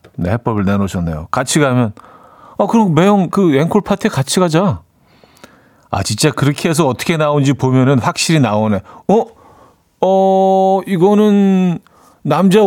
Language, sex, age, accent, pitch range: Korean, male, 40-59, native, 115-170 Hz